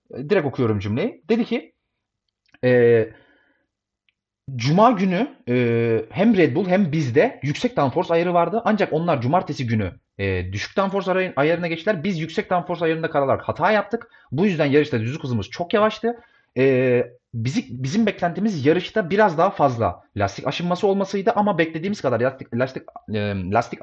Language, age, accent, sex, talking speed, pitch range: Turkish, 30-49, native, male, 145 wpm, 115-185 Hz